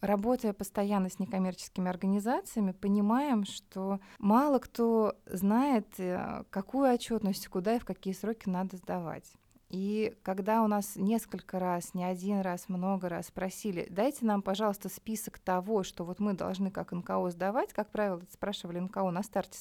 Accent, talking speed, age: native, 150 wpm, 20-39